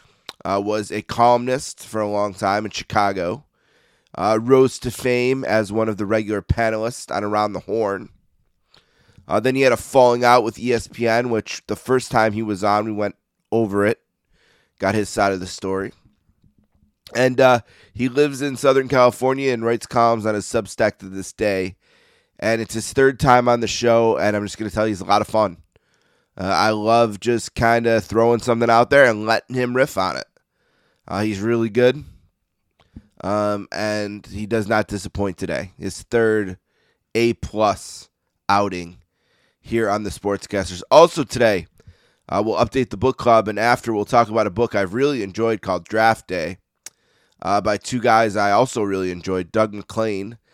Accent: American